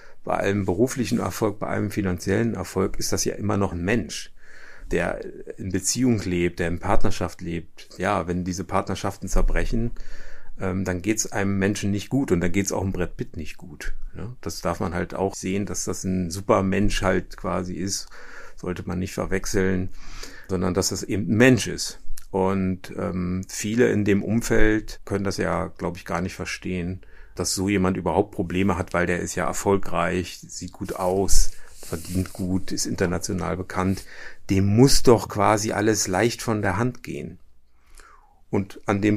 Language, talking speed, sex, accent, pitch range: German, 175 wpm, male, German, 90-105 Hz